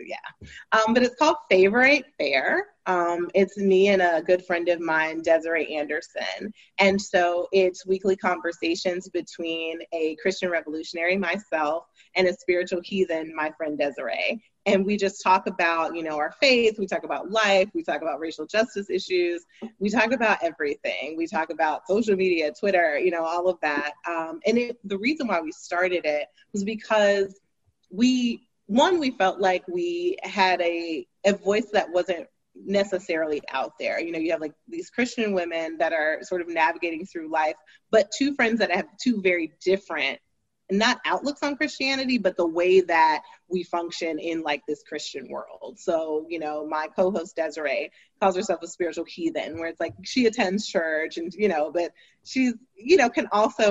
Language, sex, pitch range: English, female, 170-230 Hz